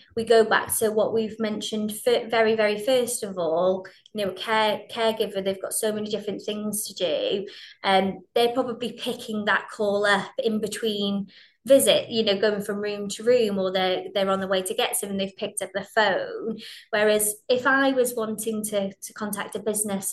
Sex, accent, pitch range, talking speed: female, British, 195-225 Hz, 200 wpm